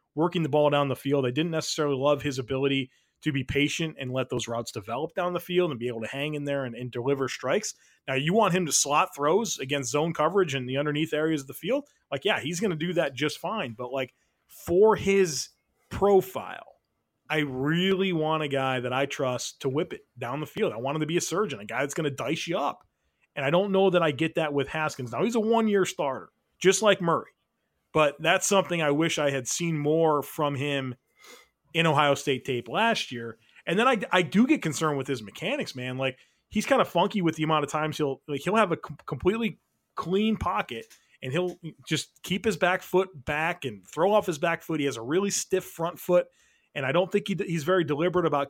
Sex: male